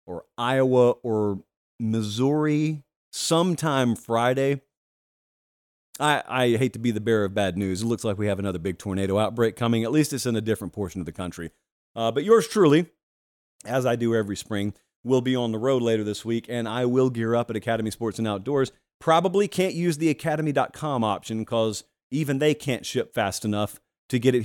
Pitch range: 105-150 Hz